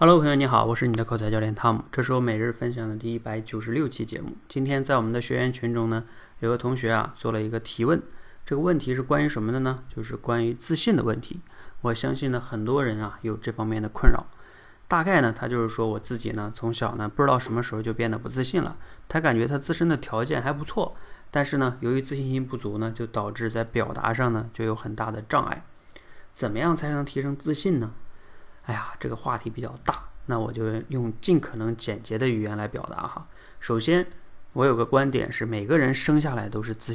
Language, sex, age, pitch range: Chinese, male, 20-39, 110-135 Hz